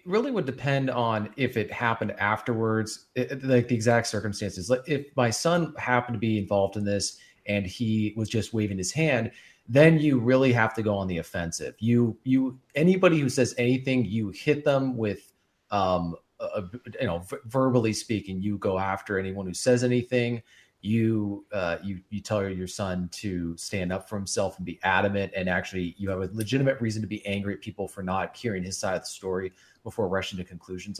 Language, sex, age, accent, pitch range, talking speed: English, male, 30-49, American, 100-130 Hz, 195 wpm